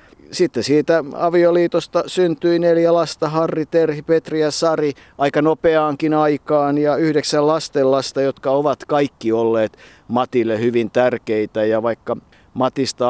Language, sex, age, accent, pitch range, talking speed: Finnish, male, 50-69, native, 110-140 Hz, 125 wpm